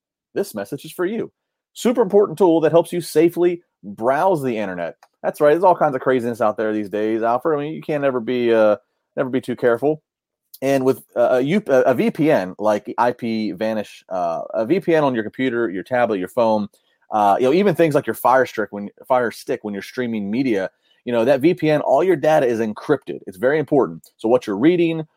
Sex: male